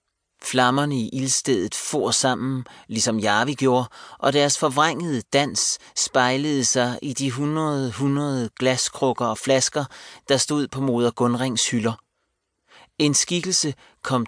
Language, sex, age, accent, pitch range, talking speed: Danish, male, 30-49, native, 115-135 Hz, 125 wpm